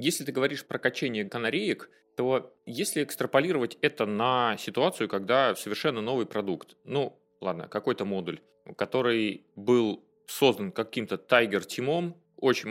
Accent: native